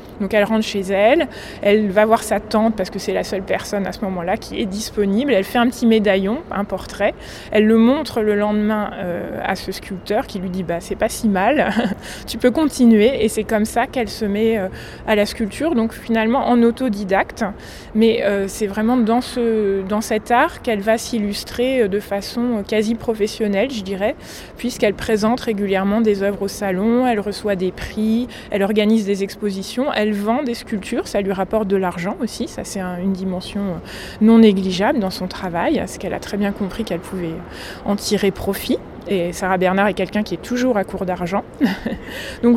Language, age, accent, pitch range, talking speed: French, 20-39, French, 195-230 Hz, 195 wpm